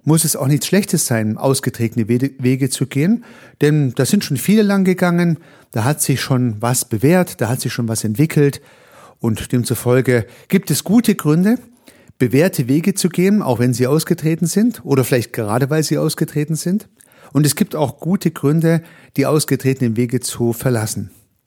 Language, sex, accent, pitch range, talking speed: German, male, German, 120-160 Hz, 175 wpm